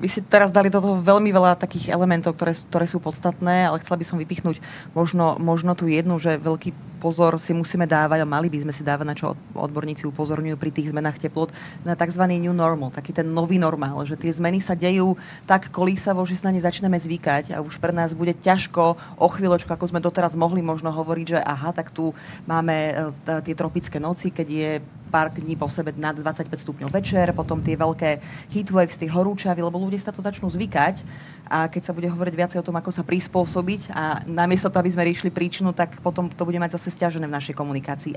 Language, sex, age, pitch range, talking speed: Slovak, female, 30-49, 160-180 Hz, 215 wpm